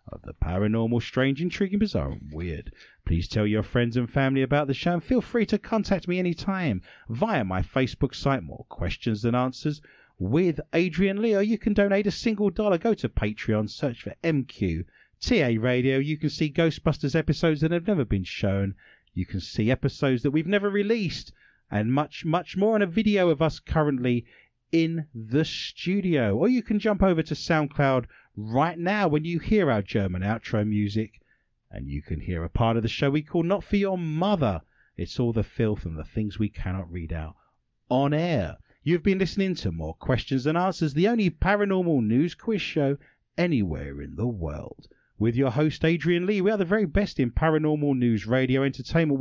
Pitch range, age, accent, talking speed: 110-175 Hz, 30-49, British, 190 wpm